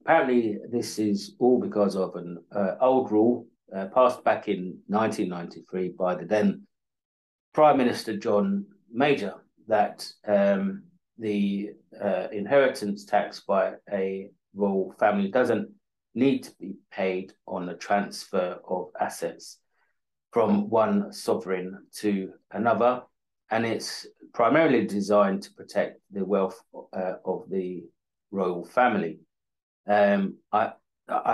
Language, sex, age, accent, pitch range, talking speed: English, male, 30-49, British, 95-125 Hz, 120 wpm